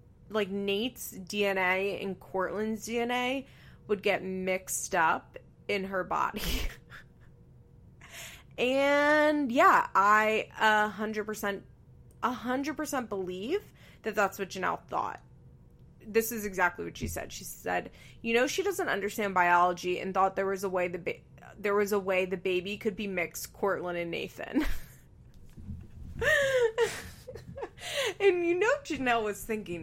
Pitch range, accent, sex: 185-230 Hz, American, female